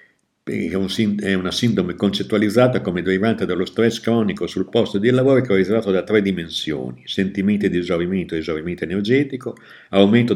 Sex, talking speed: male, 145 wpm